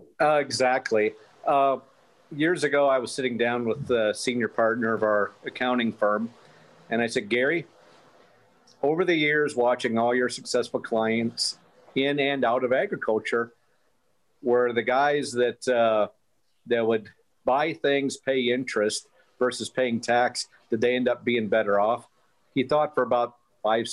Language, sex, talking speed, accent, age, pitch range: English, male, 150 wpm, American, 50-69, 115-130 Hz